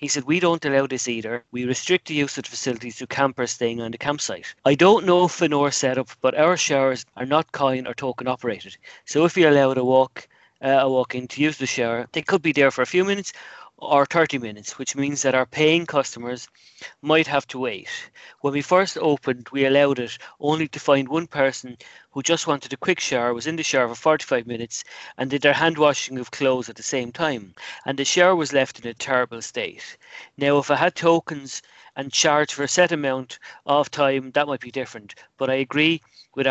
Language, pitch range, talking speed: English, 130-150 Hz, 220 wpm